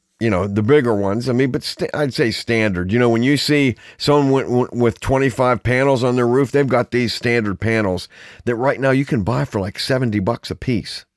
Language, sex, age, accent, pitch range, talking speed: English, male, 50-69, American, 110-140 Hz, 215 wpm